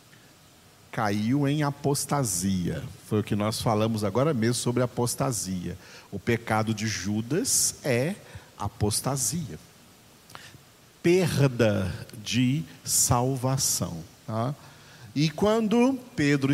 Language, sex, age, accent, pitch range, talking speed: Portuguese, male, 50-69, Brazilian, 115-145 Hz, 85 wpm